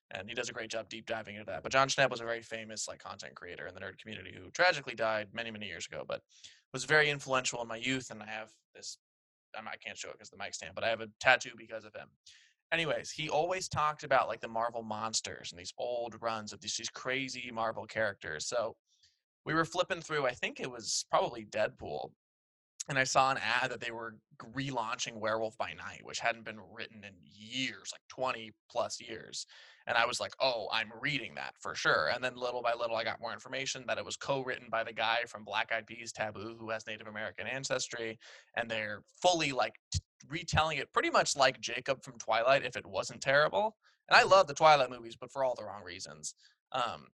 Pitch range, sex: 110-130 Hz, male